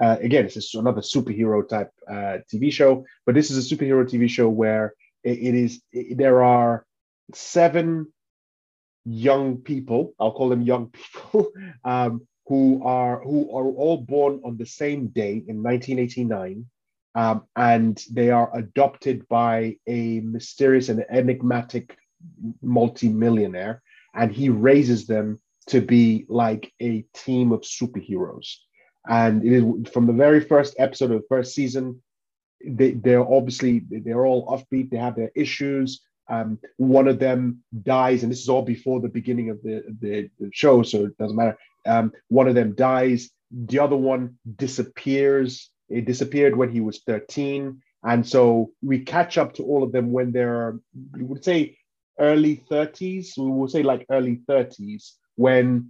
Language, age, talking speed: English, 30-49, 155 wpm